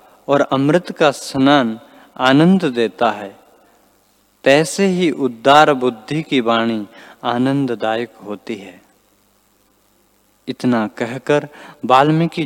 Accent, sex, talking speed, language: native, male, 90 wpm, Hindi